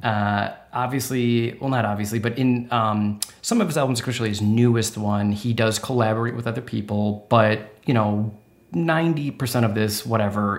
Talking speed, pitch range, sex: 165 wpm, 110-130 Hz, male